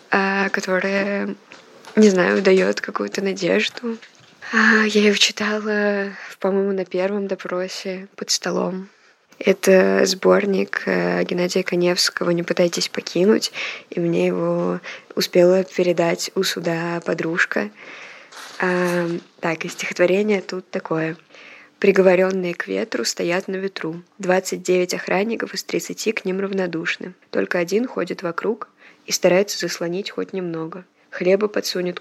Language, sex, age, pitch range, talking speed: Russian, female, 20-39, 170-195 Hz, 110 wpm